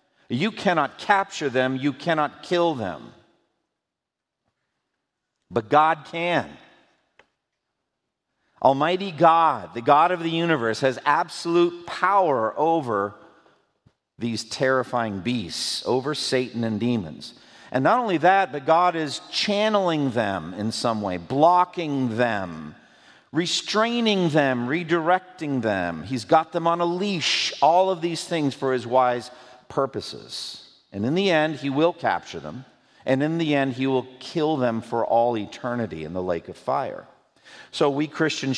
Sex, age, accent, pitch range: male, 50-69, American, 120-165 Hz